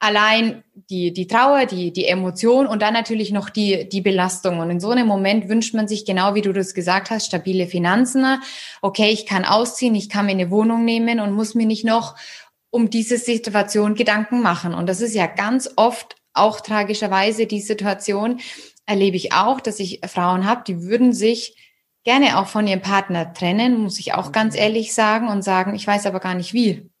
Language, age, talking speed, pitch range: German, 20-39, 200 wpm, 200-255 Hz